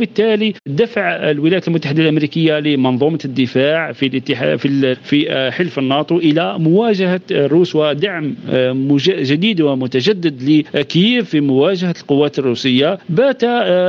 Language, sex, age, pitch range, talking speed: Arabic, male, 50-69, 140-185 Hz, 100 wpm